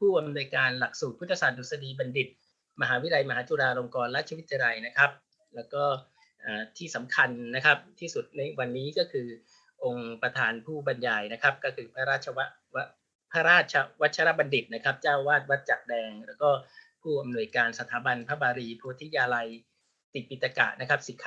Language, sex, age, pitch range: Thai, male, 30-49, 125-160 Hz